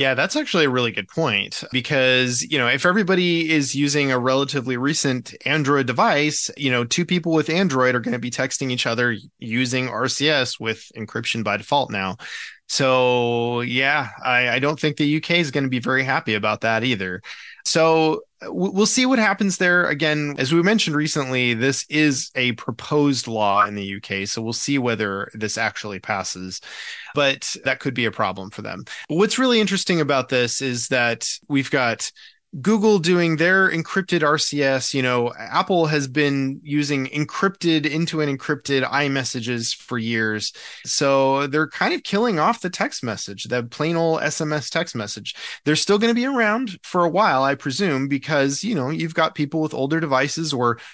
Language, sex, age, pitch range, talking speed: English, male, 20-39, 120-165 Hz, 180 wpm